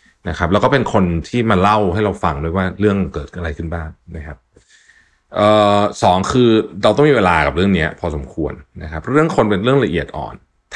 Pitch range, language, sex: 75-100 Hz, Thai, male